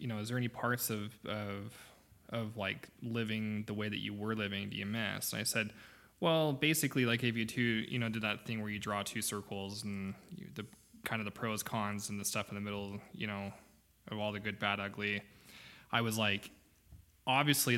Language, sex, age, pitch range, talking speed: English, male, 20-39, 105-115 Hz, 220 wpm